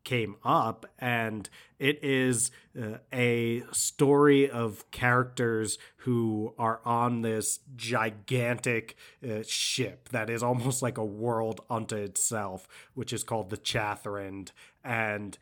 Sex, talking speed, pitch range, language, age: male, 120 wpm, 105-120 Hz, English, 30-49